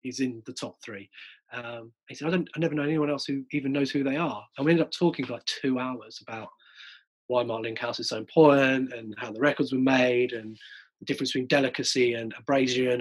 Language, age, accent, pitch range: English, 30-49, British, 130-155 Hz